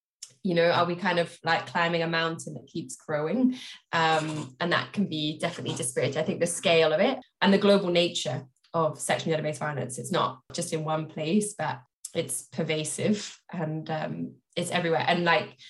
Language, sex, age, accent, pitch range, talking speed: English, female, 10-29, British, 160-180 Hz, 185 wpm